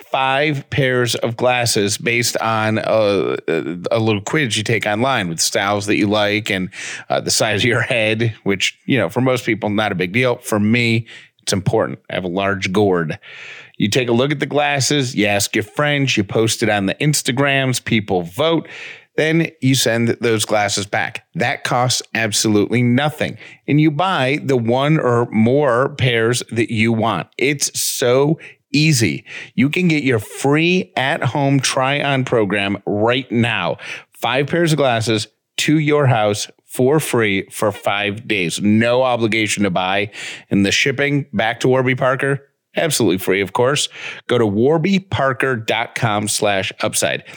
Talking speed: 165 wpm